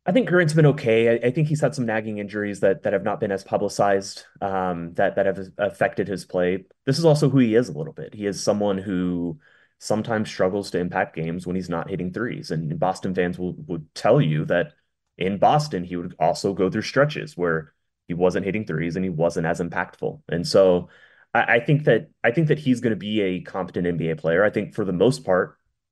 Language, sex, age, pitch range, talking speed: English, male, 20-39, 90-120 Hz, 225 wpm